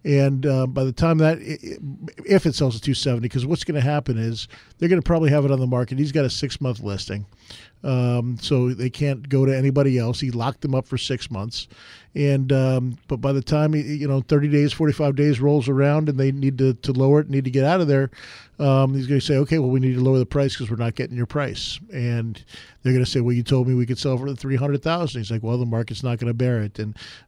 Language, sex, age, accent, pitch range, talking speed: English, male, 40-59, American, 125-150 Hz, 260 wpm